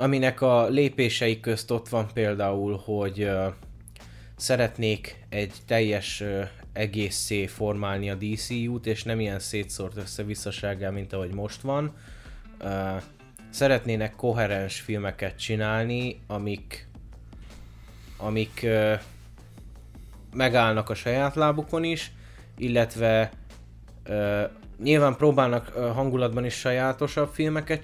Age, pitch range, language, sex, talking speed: 20-39, 105-125 Hz, Hungarian, male, 100 wpm